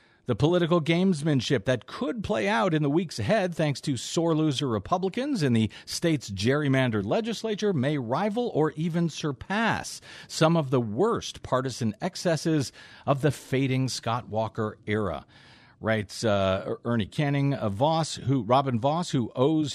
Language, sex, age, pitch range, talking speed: English, male, 50-69, 120-175 Hz, 150 wpm